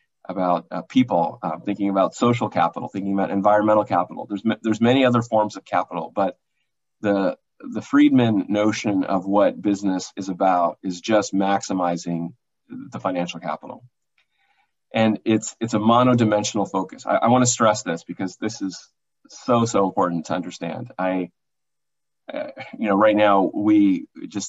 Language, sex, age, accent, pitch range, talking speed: English, male, 30-49, American, 95-110 Hz, 155 wpm